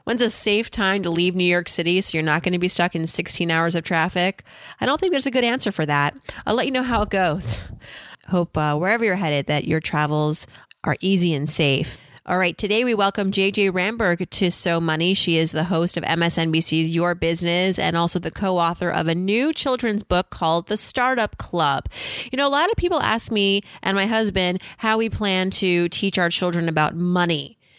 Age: 30-49